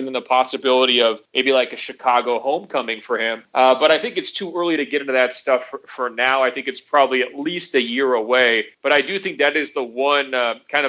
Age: 30-49